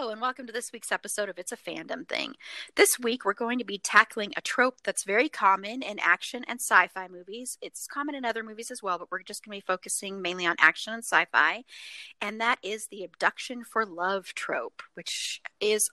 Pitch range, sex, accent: 185-245 Hz, female, American